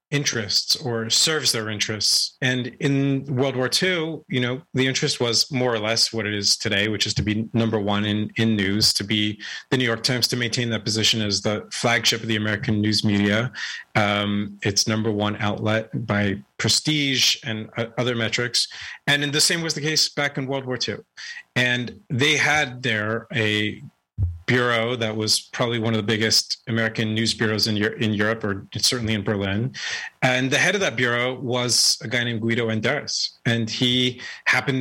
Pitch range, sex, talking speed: 110-135 Hz, male, 190 wpm